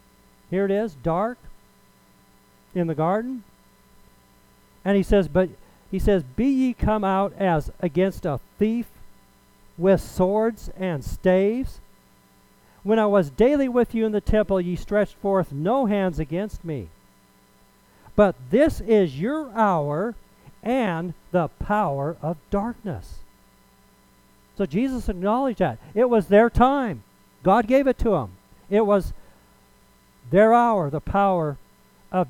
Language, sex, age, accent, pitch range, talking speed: English, male, 50-69, American, 165-220 Hz, 130 wpm